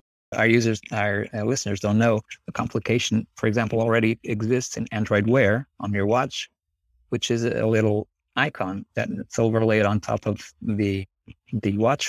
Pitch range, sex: 100-115 Hz, male